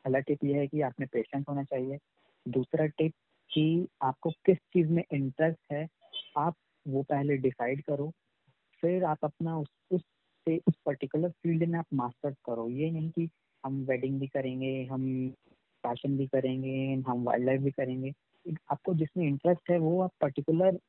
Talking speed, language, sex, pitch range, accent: 165 wpm, Hindi, female, 135-165 Hz, native